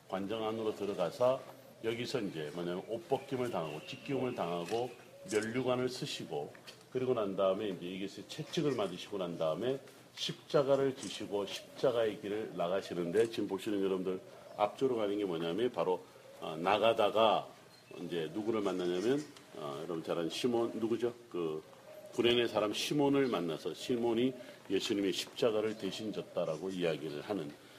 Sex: male